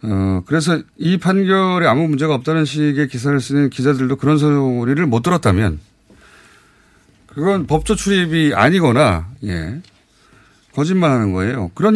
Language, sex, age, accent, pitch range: Korean, male, 30-49, native, 110-155 Hz